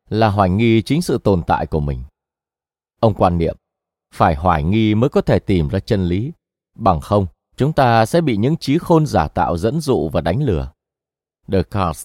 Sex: male